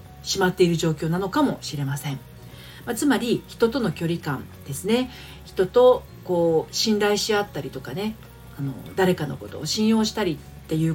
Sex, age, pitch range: female, 40-59, 145-230 Hz